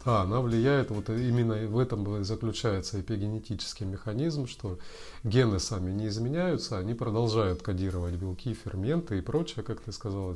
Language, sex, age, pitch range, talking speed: Russian, male, 30-49, 100-125 Hz, 145 wpm